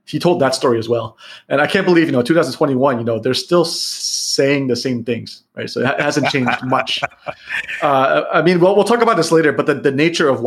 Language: English